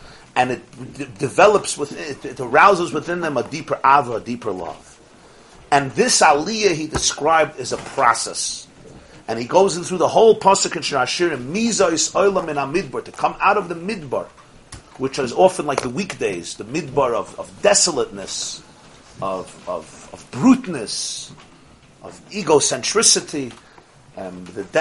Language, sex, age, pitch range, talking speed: English, male, 40-59, 135-200 Hz, 140 wpm